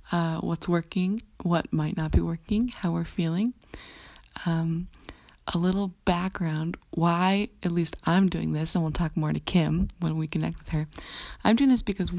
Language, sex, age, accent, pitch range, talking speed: English, female, 20-39, American, 155-190 Hz, 175 wpm